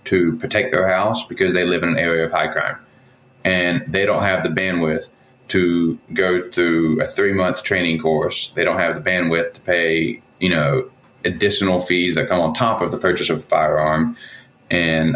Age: 30-49